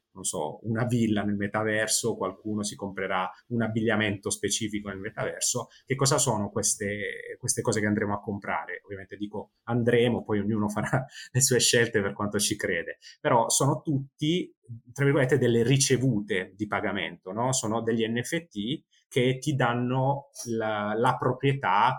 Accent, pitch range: native, 105-130 Hz